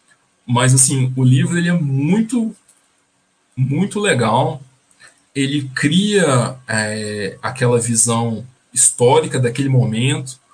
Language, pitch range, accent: Portuguese, 120-140 Hz, Brazilian